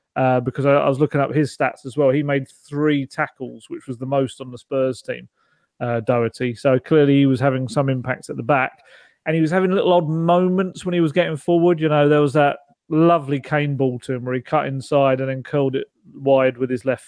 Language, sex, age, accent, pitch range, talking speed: English, male, 30-49, British, 135-160 Hz, 245 wpm